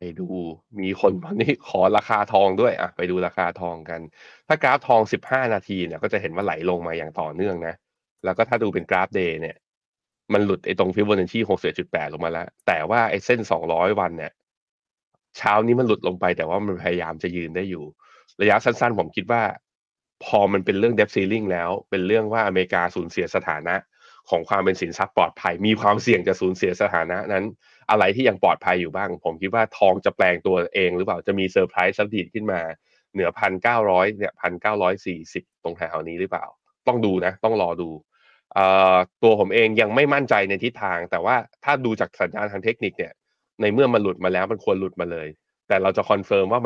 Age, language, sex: 20-39, Thai, male